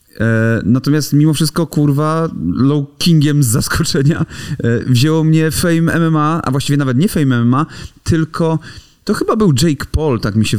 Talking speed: 155 wpm